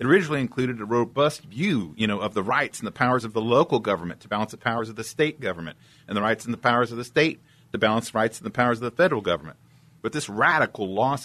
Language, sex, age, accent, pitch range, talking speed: English, male, 50-69, American, 105-150 Hz, 260 wpm